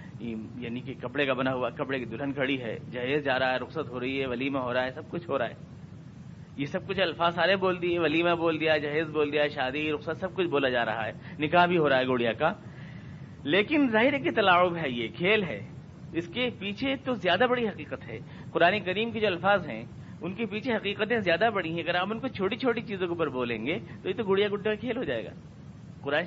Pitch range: 145-195 Hz